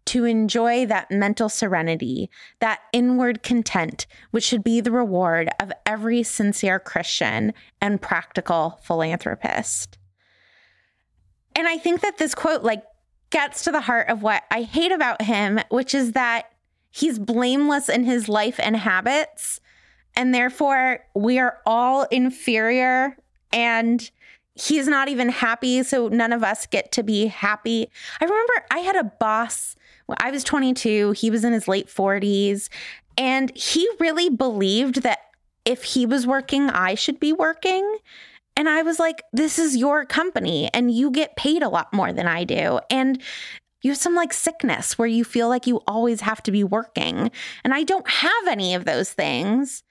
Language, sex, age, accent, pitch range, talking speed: English, female, 20-39, American, 220-280 Hz, 165 wpm